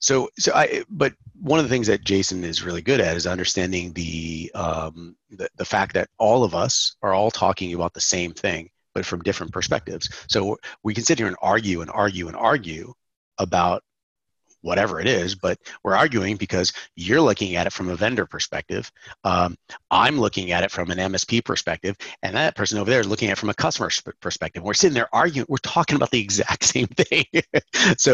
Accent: American